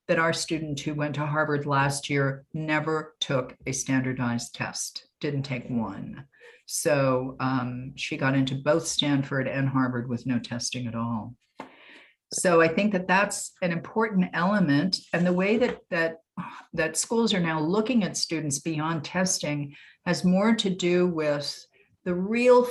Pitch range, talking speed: 140-180 Hz, 160 wpm